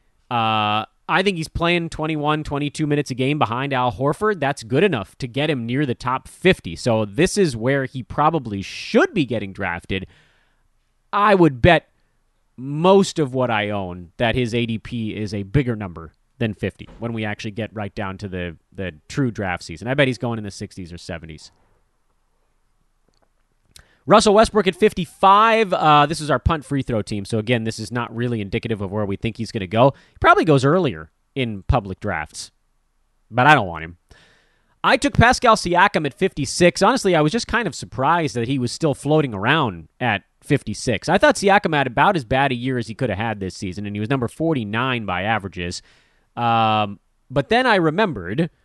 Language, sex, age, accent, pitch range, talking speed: English, male, 30-49, American, 105-155 Hz, 195 wpm